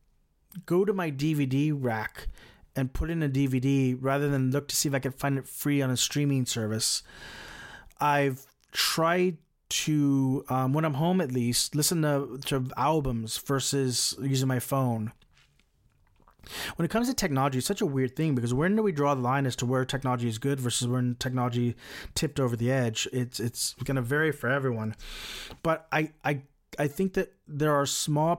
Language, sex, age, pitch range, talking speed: English, male, 30-49, 125-155 Hz, 185 wpm